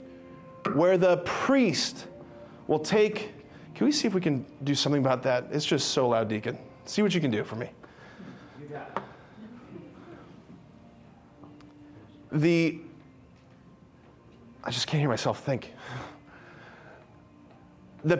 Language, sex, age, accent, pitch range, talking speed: English, male, 30-49, American, 140-200 Hz, 115 wpm